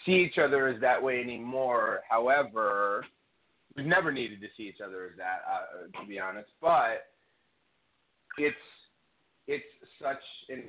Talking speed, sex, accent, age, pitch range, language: 145 wpm, male, American, 30-49, 100-135 Hz, English